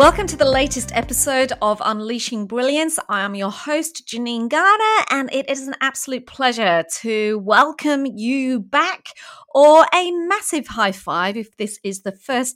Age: 30-49